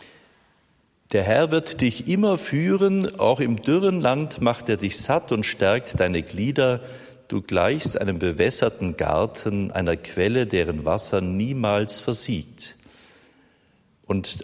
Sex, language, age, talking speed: male, German, 50-69, 125 wpm